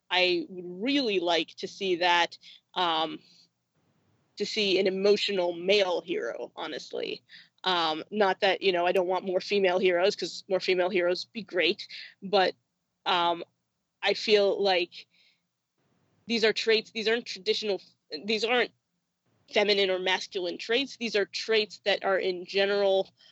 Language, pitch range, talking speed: English, 175-200 Hz, 145 wpm